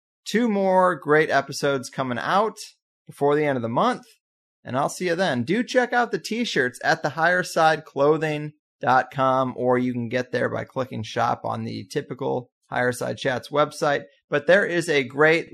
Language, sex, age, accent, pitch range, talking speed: English, male, 30-49, American, 125-175 Hz, 175 wpm